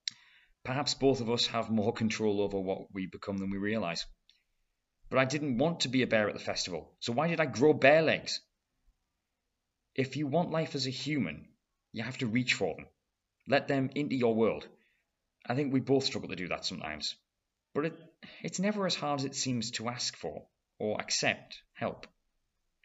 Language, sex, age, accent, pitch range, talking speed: English, male, 30-49, British, 100-135 Hz, 190 wpm